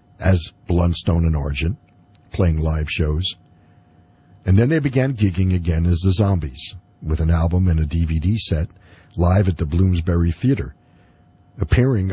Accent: American